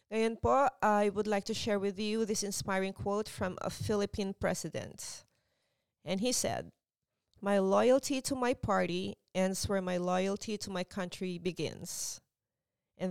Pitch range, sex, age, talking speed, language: 175-215 Hz, female, 30-49, 150 wpm, English